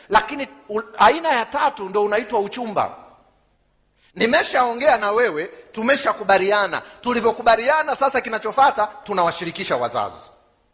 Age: 40-59